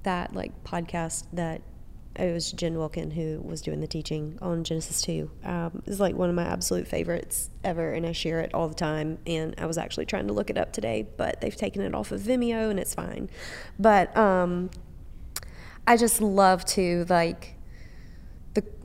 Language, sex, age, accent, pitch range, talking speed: English, female, 20-39, American, 160-185 Hz, 190 wpm